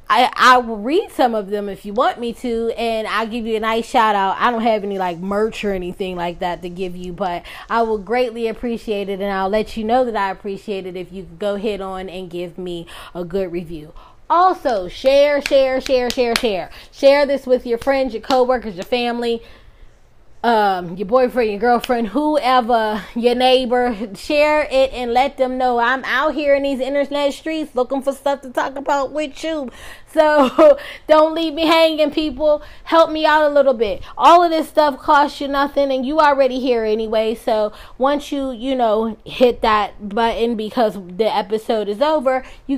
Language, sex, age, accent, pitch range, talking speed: English, female, 20-39, American, 210-280 Hz, 200 wpm